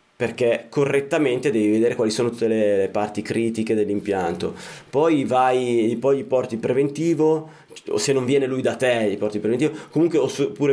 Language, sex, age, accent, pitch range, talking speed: Italian, male, 20-39, native, 110-155 Hz, 180 wpm